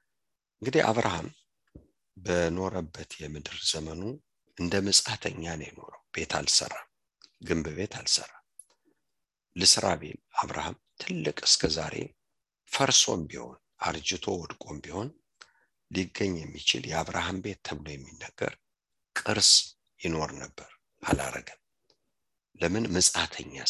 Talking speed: 75 wpm